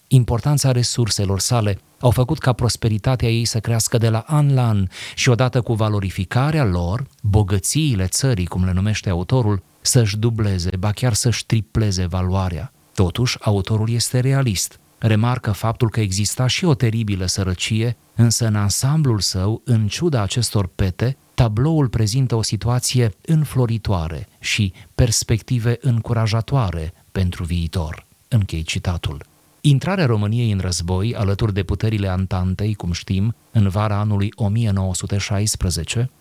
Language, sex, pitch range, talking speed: Romanian, male, 100-120 Hz, 130 wpm